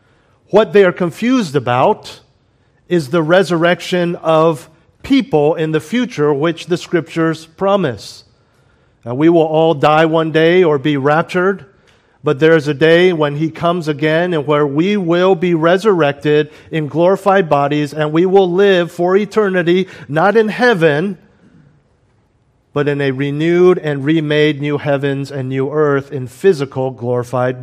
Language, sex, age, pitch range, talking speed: English, male, 50-69, 135-175 Hz, 145 wpm